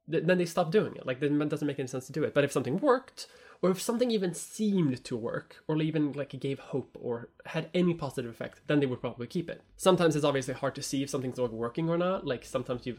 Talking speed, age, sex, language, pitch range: 270 wpm, 20-39, male, English, 125-165 Hz